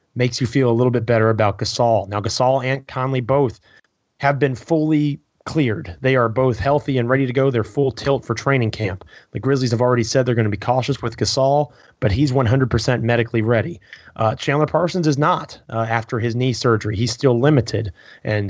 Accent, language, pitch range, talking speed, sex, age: American, English, 115-140 Hz, 205 wpm, male, 30-49